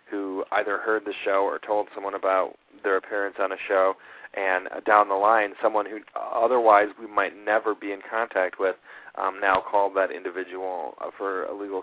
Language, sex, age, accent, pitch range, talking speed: English, male, 30-49, American, 90-105 Hz, 195 wpm